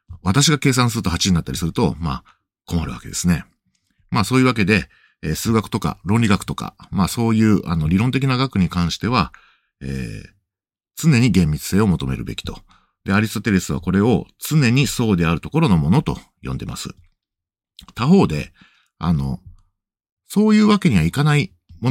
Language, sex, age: Japanese, male, 50-69